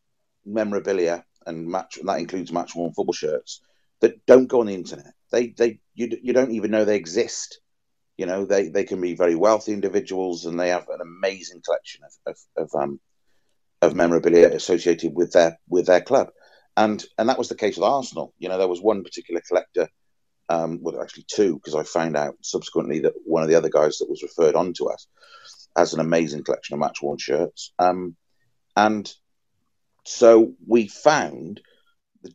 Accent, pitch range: British, 85-125 Hz